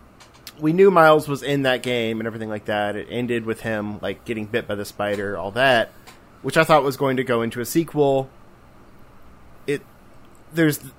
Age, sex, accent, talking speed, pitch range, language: 30-49, male, American, 190 wpm, 105-135 Hz, English